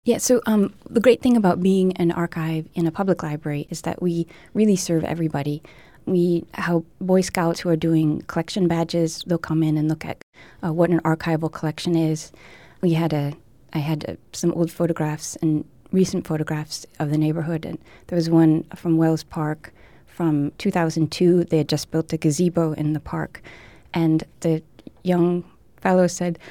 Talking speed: 180 wpm